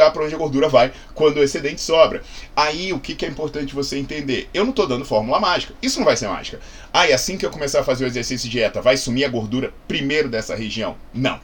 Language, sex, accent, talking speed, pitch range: Portuguese, male, Brazilian, 250 wpm, 125-175 Hz